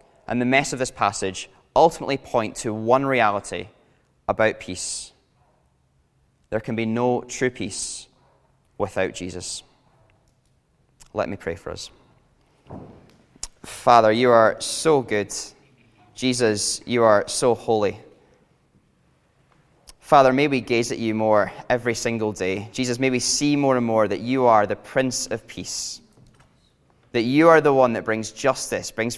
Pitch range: 105-125 Hz